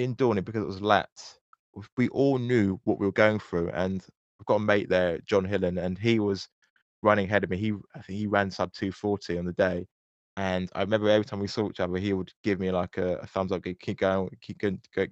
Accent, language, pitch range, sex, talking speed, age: British, English, 95-120 Hz, male, 245 wpm, 20-39